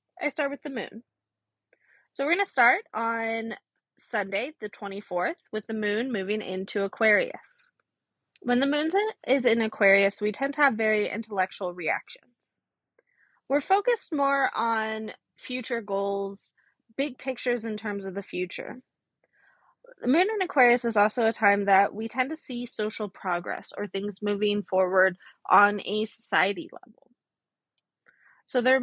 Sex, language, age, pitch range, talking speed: female, English, 20-39, 200-265 Hz, 150 wpm